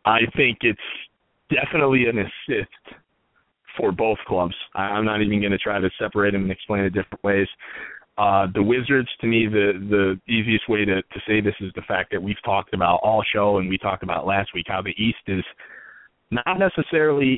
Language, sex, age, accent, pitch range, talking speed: English, male, 30-49, American, 100-125 Hz, 195 wpm